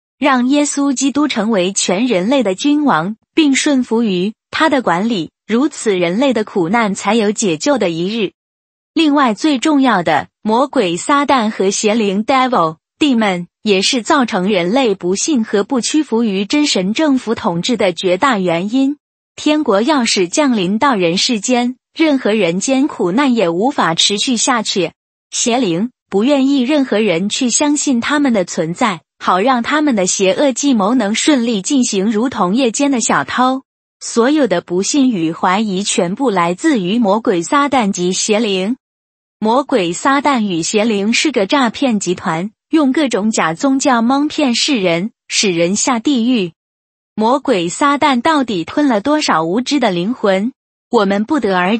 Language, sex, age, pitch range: Chinese, female, 20-39, 195-275 Hz